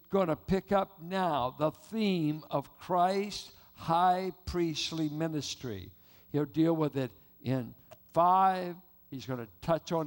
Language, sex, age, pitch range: English, male, 60-79, 125-190 Hz